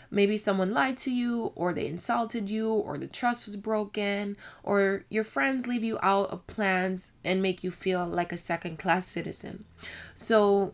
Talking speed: 175 wpm